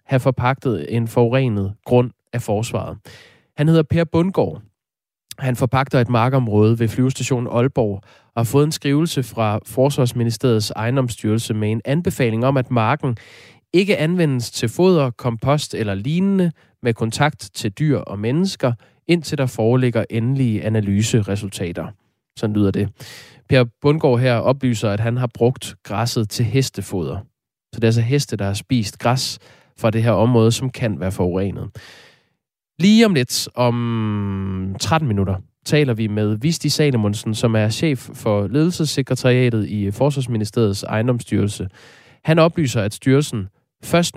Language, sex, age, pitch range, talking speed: Danish, male, 20-39, 110-135 Hz, 145 wpm